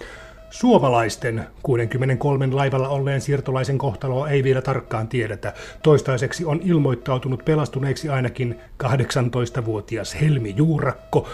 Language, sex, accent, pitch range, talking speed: Finnish, male, native, 120-140 Hz, 95 wpm